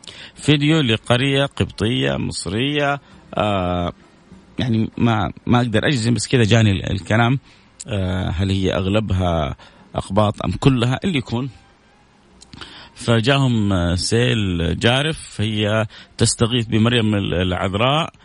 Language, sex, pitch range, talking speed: Arabic, male, 95-120 Hz, 100 wpm